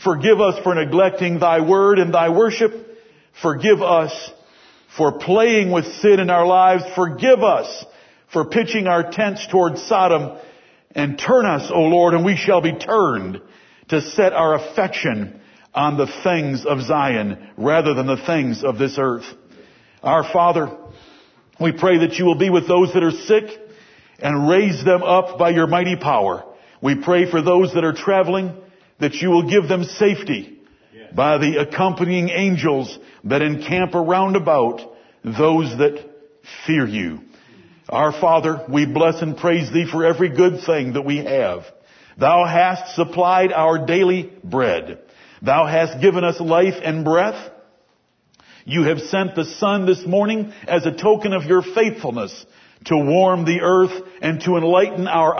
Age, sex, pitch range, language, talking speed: 60-79, male, 155-185 Hz, English, 160 wpm